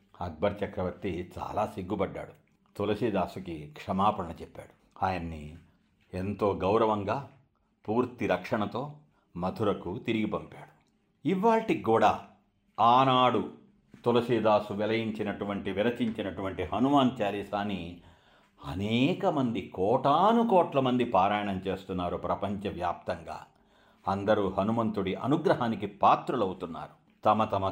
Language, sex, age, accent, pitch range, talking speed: Telugu, male, 60-79, native, 100-130 Hz, 80 wpm